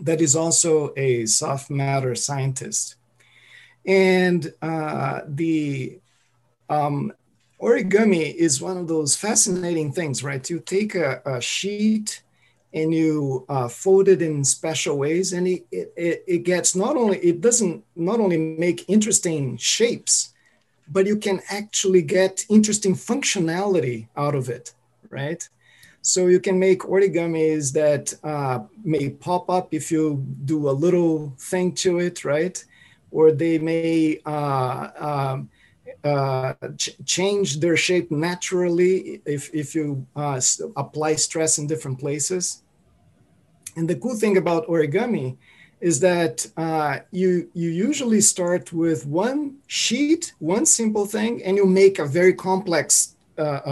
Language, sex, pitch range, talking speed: English, male, 145-185 Hz, 135 wpm